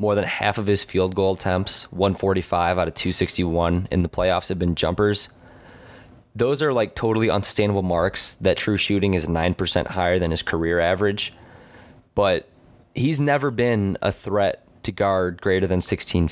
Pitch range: 90-110 Hz